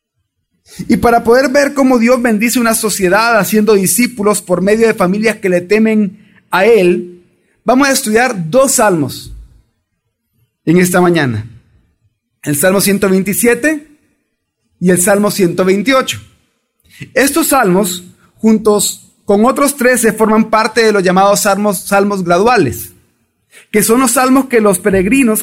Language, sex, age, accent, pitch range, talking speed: Spanish, male, 30-49, Mexican, 190-240 Hz, 130 wpm